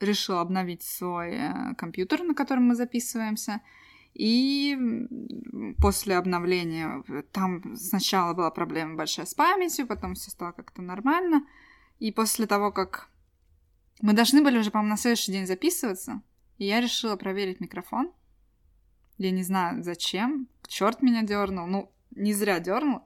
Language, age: Russian, 20-39